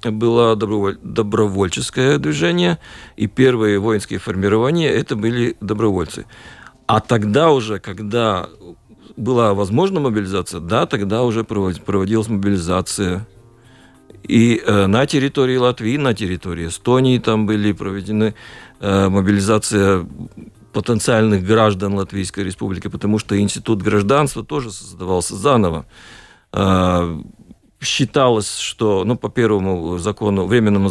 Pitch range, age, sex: 100-115 Hz, 40-59, male